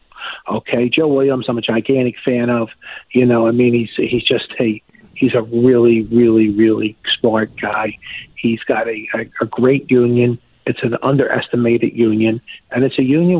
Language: English